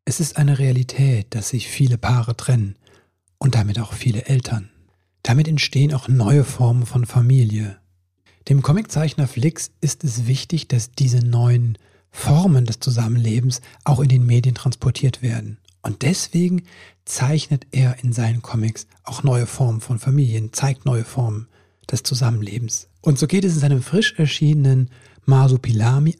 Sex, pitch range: male, 115-140 Hz